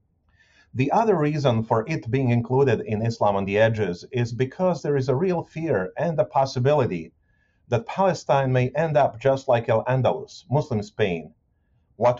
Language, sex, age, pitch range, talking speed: English, male, 40-59, 110-140 Hz, 160 wpm